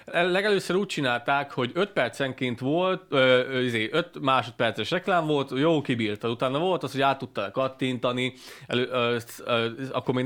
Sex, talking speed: male, 130 wpm